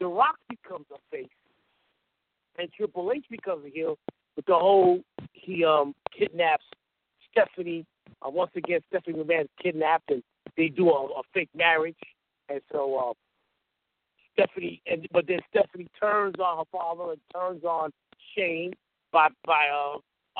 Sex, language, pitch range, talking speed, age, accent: male, English, 170-275 Hz, 150 wpm, 50-69, American